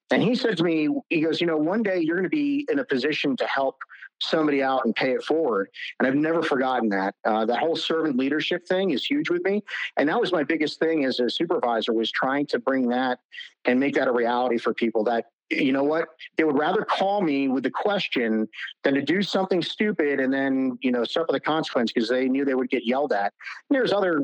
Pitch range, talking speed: 130-170 Hz, 240 wpm